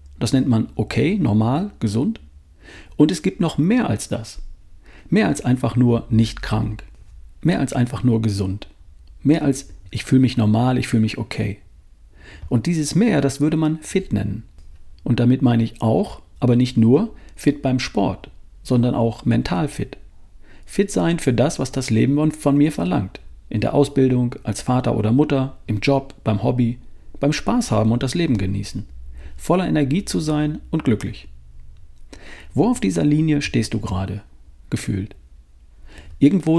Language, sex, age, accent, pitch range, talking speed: German, male, 40-59, German, 95-145 Hz, 165 wpm